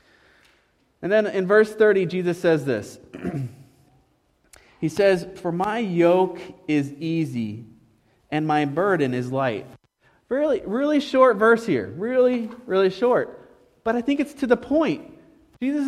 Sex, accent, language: male, American, English